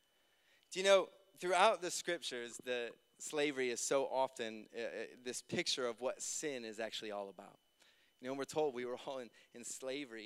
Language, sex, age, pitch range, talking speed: English, male, 30-49, 145-205 Hz, 185 wpm